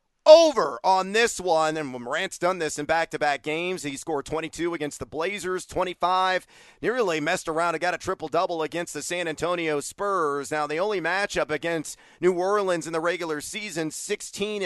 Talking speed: 175 wpm